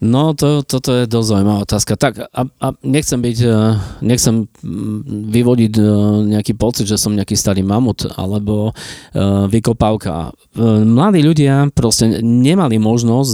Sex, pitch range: male, 105-125 Hz